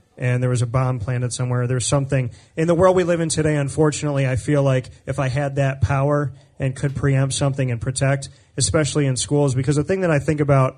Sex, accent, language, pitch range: male, American, English, 125-150 Hz